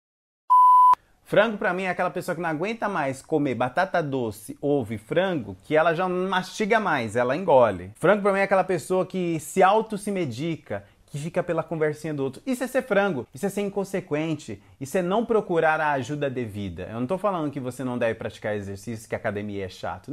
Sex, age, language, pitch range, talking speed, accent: male, 30-49, Portuguese, 125-180 Hz, 210 wpm, Brazilian